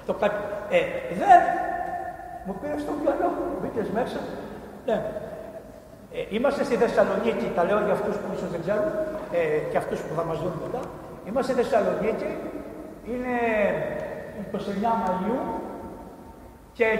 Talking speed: 135 wpm